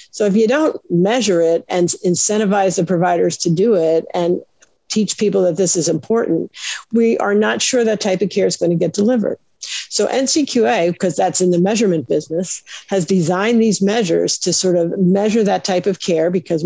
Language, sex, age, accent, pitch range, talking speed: English, female, 50-69, American, 175-205 Hz, 195 wpm